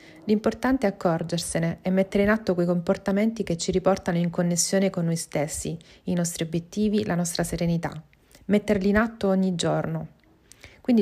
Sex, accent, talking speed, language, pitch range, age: female, native, 160 wpm, Italian, 170-205 Hz, 30-49